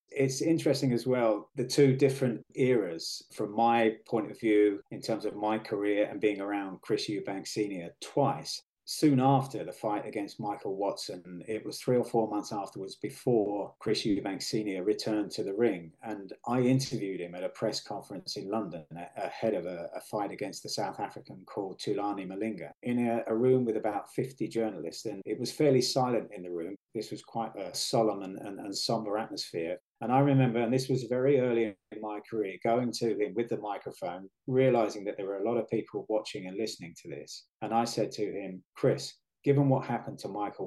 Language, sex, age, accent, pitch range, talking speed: English, male, 40-59, British, 105-130 Hz, 200 wpm